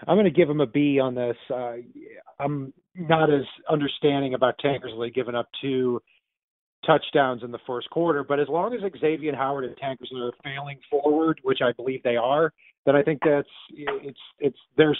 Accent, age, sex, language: American, 40-59, male, English